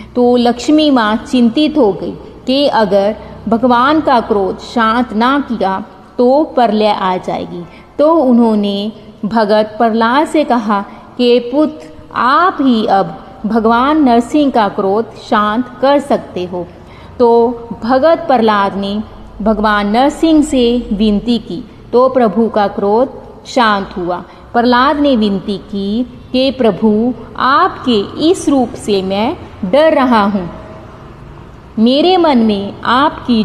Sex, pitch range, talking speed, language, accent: female, 205-260 Hz, 125 wpm, Hindi, native